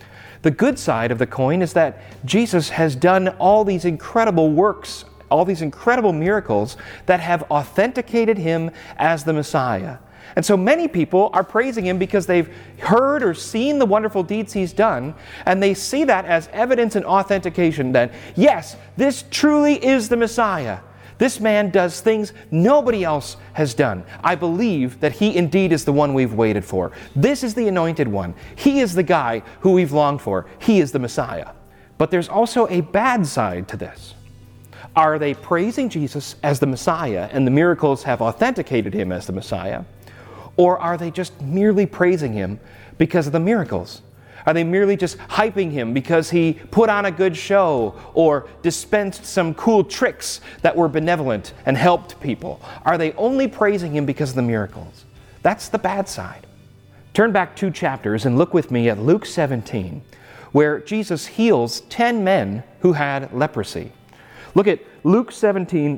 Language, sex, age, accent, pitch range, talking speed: English, male, 40-59, American, 125-200 Hz, 170 wpm